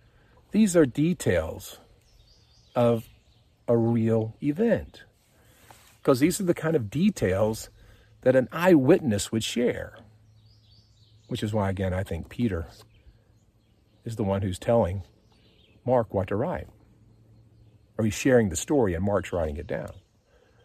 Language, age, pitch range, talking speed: English, 50-69, 95-115 Hz, 130 wpm